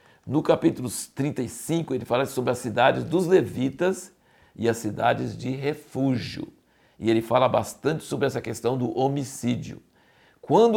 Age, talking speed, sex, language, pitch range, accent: 60-79, 140 wpm, male, Portuguese, 115-140 Hz, Brazilian